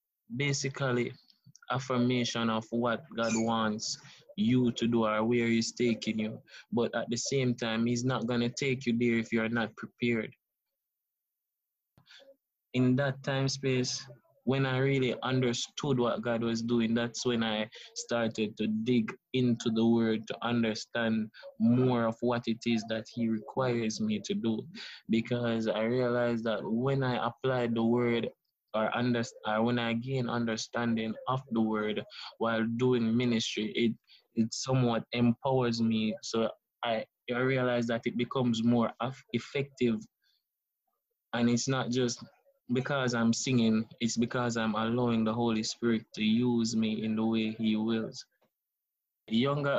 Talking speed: 145 wpm